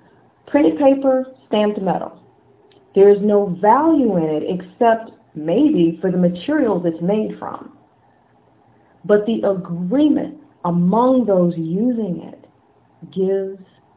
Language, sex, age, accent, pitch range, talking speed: English, female, 40-59, American, 175-245 Hz, 110 wpm